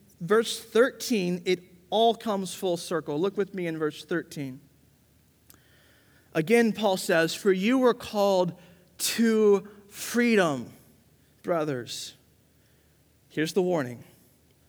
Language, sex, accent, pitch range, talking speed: English, male, American, 135-185 Hz, 105 wpm